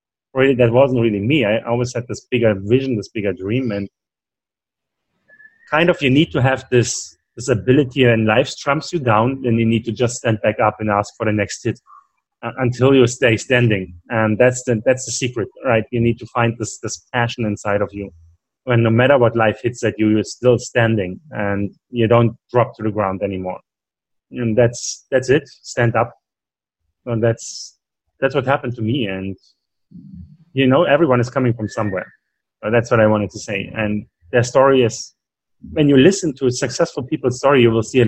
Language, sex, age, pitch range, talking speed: English, male, 30-49, 110-125 Hz, 200 wpm